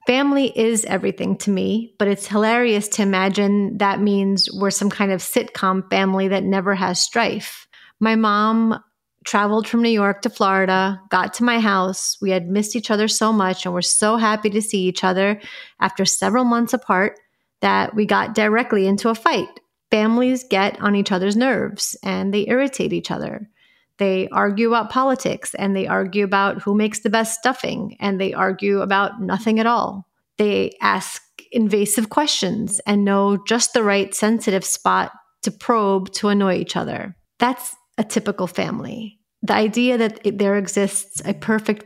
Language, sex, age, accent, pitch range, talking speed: English, female, 30-49, American, 195-225 Hz, 170 wpm